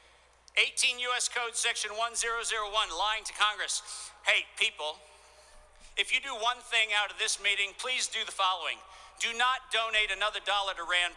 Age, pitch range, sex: 50-69, 195-235 Hz, male